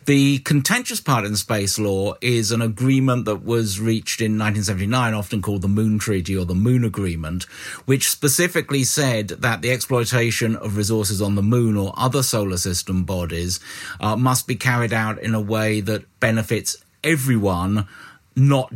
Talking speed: 165 wpm